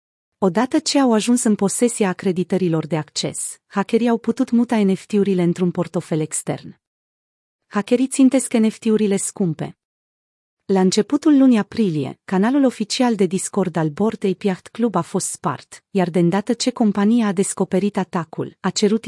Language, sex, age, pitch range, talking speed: Romanian, female, 30-49, 180-225 Hz, 145 wpm